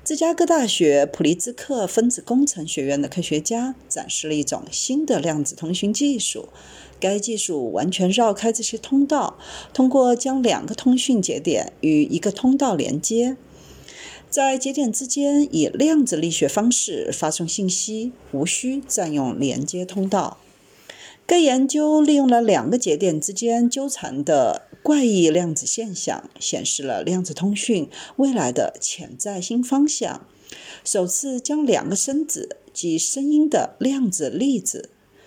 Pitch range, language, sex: 180-275 Hz, Chinese, female